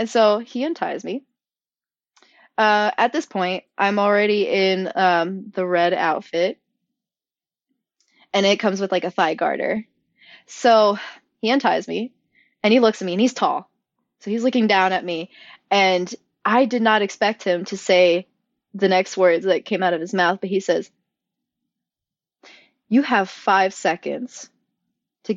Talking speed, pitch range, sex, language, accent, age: 160 wpm, 200-265 Hz, female, English, American, 20-39